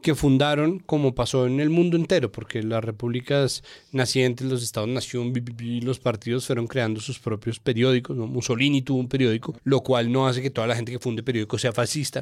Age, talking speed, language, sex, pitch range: 30-49, 200 wpm, Spanish, male, 120-140 Hz